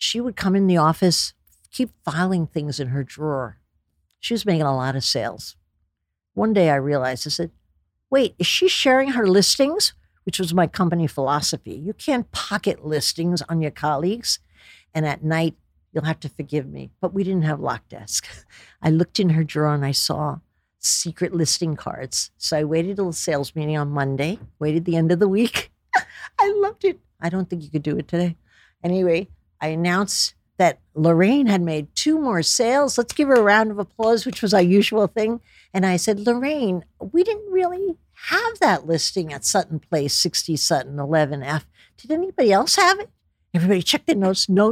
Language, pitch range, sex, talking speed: English, 150-220 Hz, female, 190 wpm